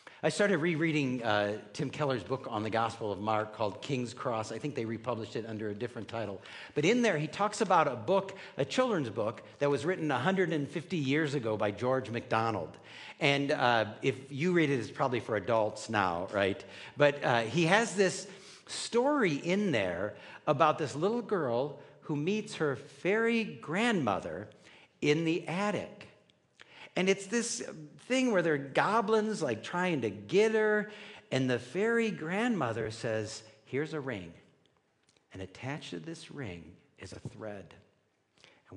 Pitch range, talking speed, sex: 110-175 Hz, 165 wpm, male